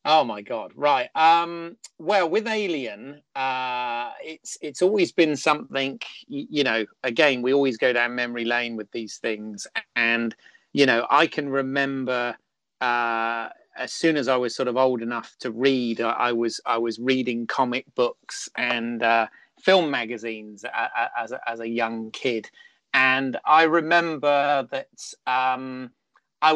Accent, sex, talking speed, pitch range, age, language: British, male, 160 wpm, 120-145 Hz, 30-49, English